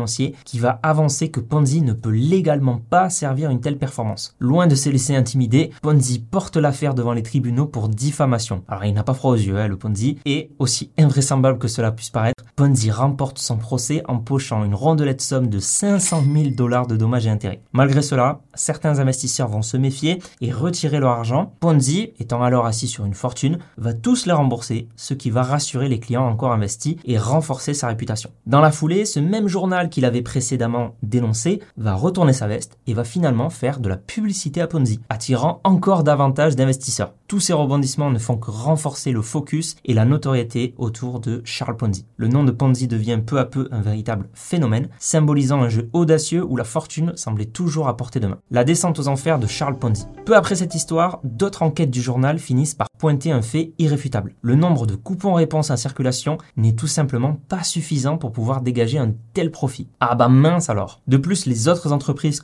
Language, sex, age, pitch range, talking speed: French, male, 20-39, 120-155 Hz, 200 wpm